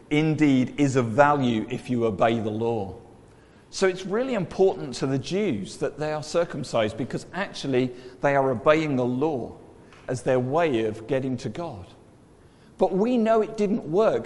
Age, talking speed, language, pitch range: 40-59, 170 wpm, English, 120-170 Hz